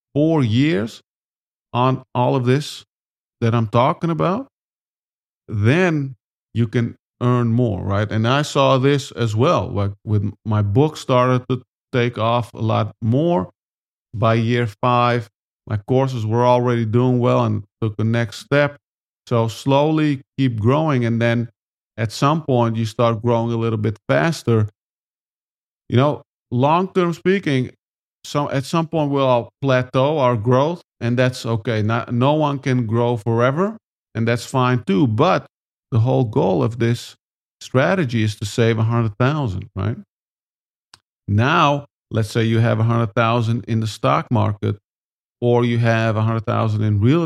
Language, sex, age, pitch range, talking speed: English, male, 50-69, 110-130 Hz, 155 wpm